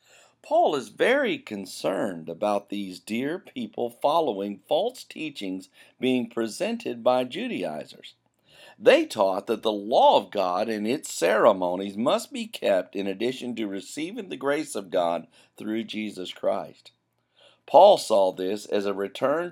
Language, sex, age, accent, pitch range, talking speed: English, male, 50-69, American, 100-150 Hz, 140 wpm